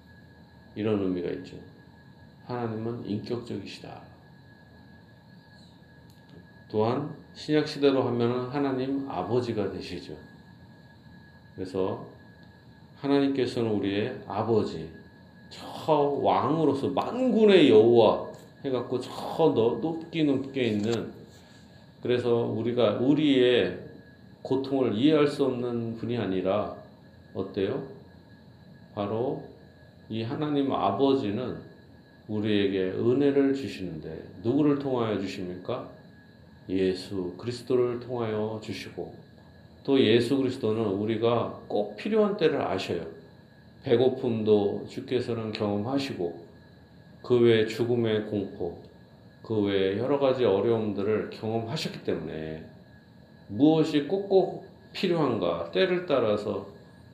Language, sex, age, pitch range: Korean, male, 40-59, 105-140 Hz